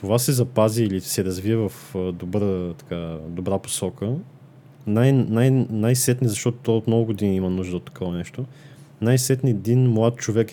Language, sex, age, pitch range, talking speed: Bulgarian, male, 20-39, 105-130 Hz, 155 wpm